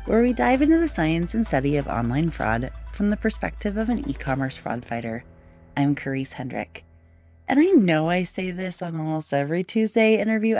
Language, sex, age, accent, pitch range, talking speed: English, female, 30-49, American, 145-205 Hz, 185 wpm